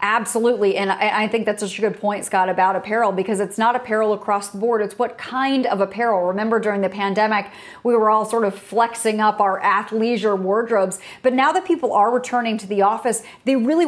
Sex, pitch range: female, 205-245 Hz